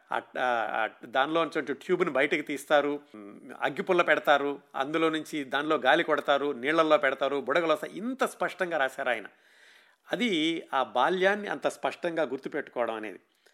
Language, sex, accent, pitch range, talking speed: Telugu, male, native, 140-180 Hz, 110 wpm